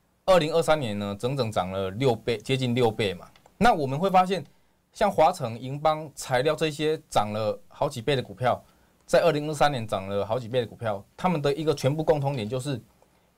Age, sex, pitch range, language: 20-39, male, 110-145 Hz, Chinese